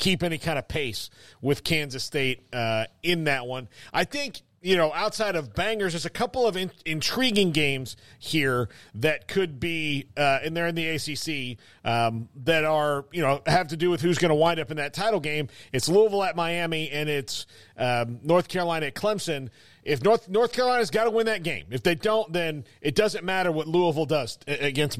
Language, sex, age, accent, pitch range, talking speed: English, male, 40-59, American, 140-190 Hz, 205 wpm